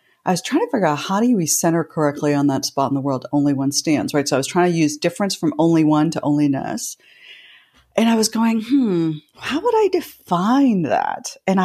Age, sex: 40-59, female